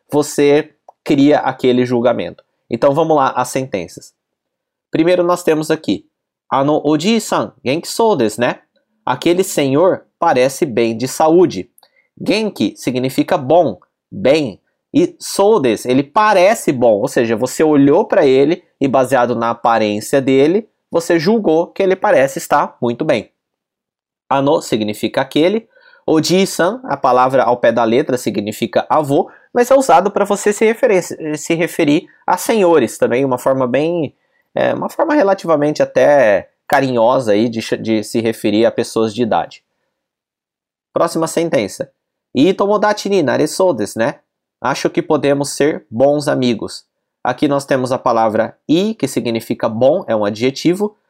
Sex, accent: male, Brazilian